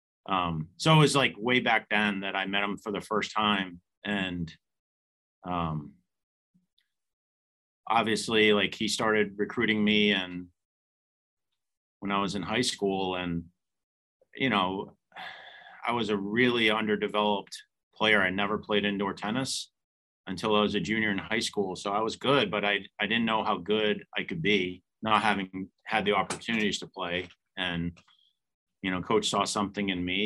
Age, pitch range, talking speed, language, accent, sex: 40-59, 90-105 Hz, 165 wpm, English, American, male